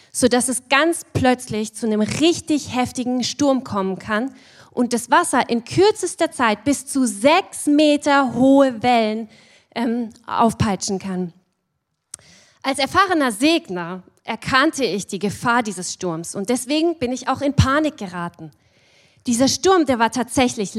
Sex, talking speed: female, 140 wpm